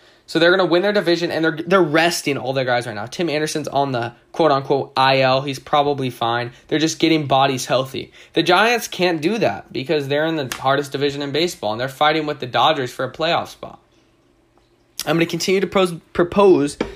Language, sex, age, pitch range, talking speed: English, male, 10-29, 120-155 Hz, 210 wpm